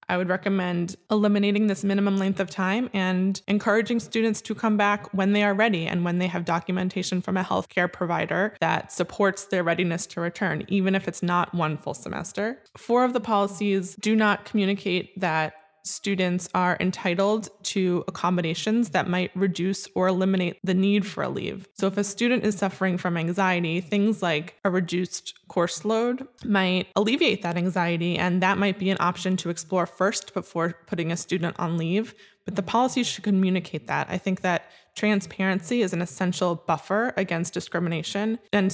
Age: 20-39